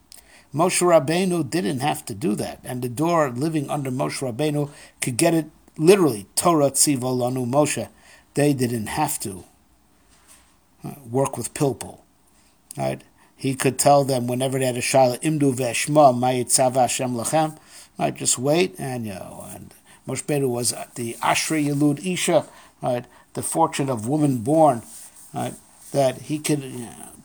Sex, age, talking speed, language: male, 50-69, 150 wpm, English